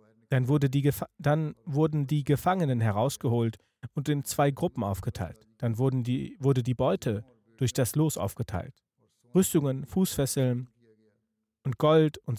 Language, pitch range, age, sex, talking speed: German, 115-145 Hz, 40-59, male, 140 wpm